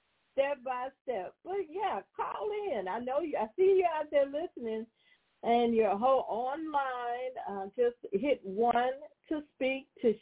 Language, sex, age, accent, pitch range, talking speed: English, female, 50-69, American, 215-290 Hz, 160 wpm